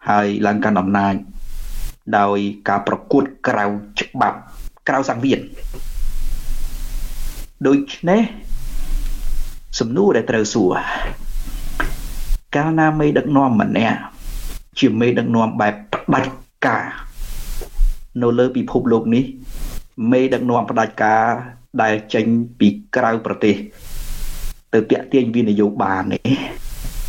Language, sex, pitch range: English, male, 110-155 Hz